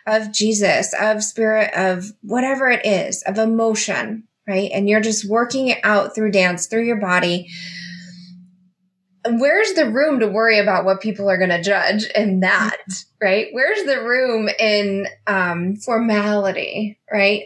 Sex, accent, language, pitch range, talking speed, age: female, American, English, 200-260 Hz, 150 wpm, 20-39